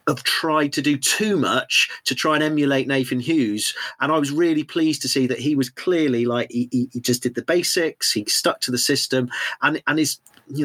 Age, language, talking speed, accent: 40-59, English, 220 wpm, British